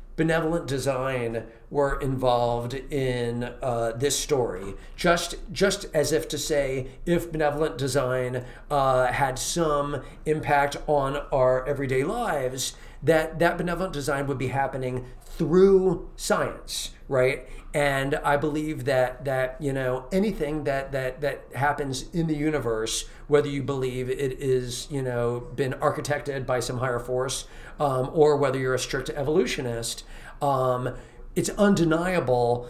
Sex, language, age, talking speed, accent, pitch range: male, English, 40-59, 135 wpm, American, 125-150 Hz